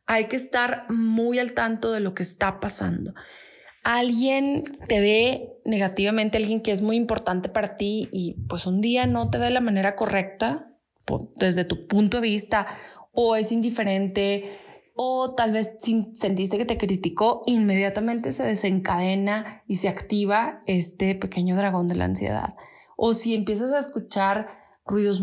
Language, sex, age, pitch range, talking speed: Spanish, female, 20-39, 190-225 Hz, 155 wpm